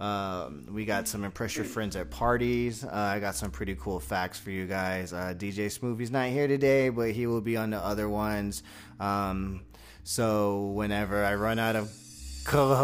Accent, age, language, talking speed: American, 30-49, English, 185 wpm